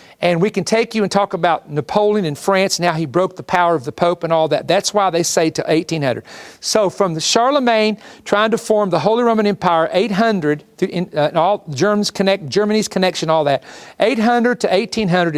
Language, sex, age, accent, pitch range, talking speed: English, male, 50-69, American, 170-225 Hz, 205 wpm